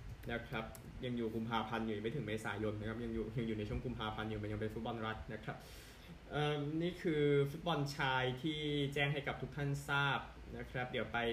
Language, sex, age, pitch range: Thai, male, 20-39, 110-140 Hz